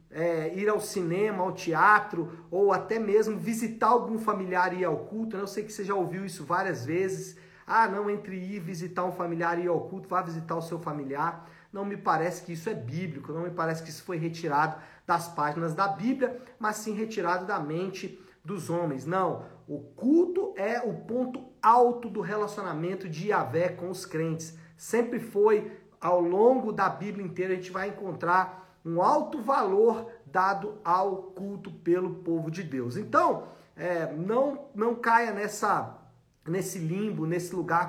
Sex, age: male, 50-69